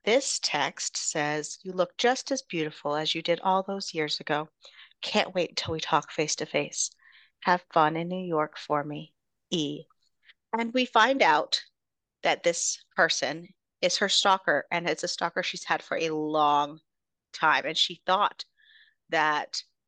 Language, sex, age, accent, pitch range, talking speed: English, female, 30-49, American, 160-220 Hz, 165 wpm